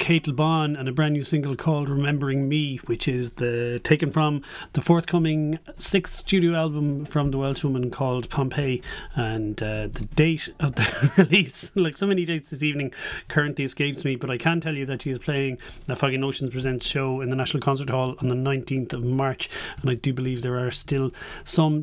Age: 30-49